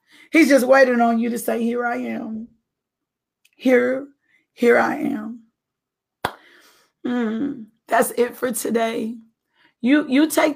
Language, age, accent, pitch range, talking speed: English, 40-59, American, 230-280 Hz, 125 wpm